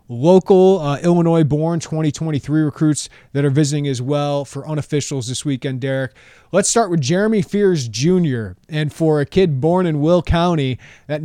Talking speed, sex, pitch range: 160 wpm, male, 135-175 Hz